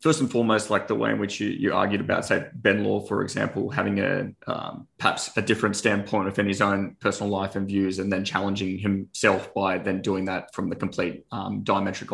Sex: male